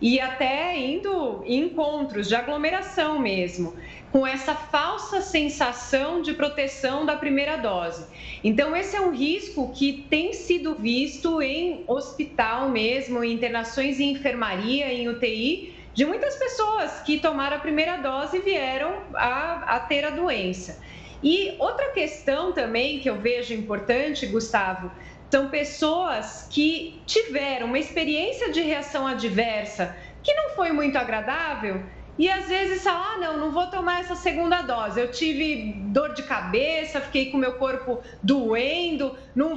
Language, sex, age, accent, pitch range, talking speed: Portuguese, female, 30-49, Brazilian, 245-335 Hz, 145 wpm